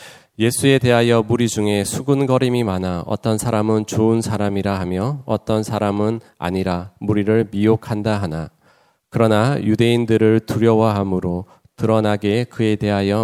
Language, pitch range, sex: Korean, 95-115 Hz, male